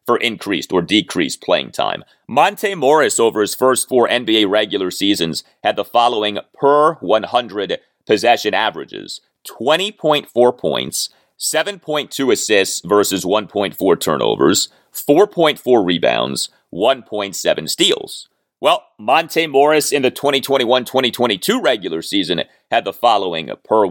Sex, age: male, 30-49